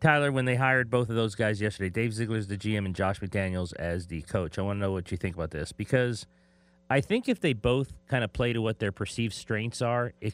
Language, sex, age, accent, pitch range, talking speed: English, male, 30-49, American, 95-120 Hz, 255 wpm